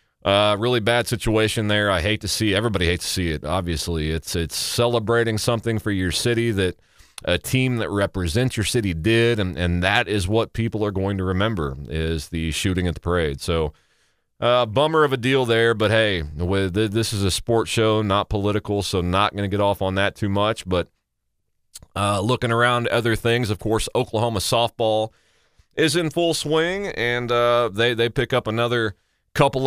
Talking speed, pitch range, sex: 190 wpm, 95-120 Hz, male